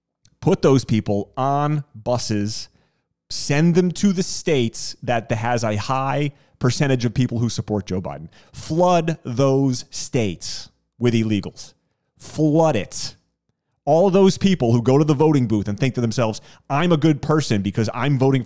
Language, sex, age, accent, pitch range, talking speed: English, male, 30-49, American, 115-150 Hz, 155 wpm